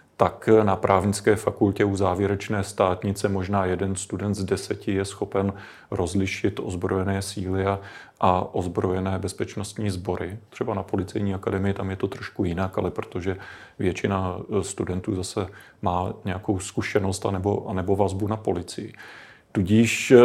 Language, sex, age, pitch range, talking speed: Czech, male, 30-49, 95-105 Hz, 125 wpm